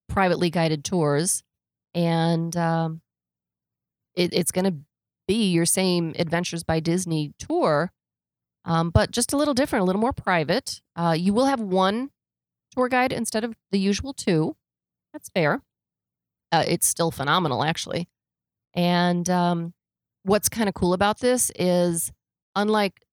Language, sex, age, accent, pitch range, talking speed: English, female, 30-49, American, 155-195 Hz, 140 wpm